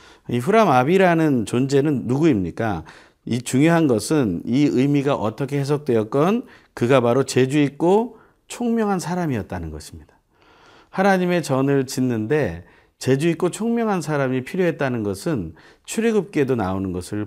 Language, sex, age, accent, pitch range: Korean, male, 40-59, native, 105-155 Hz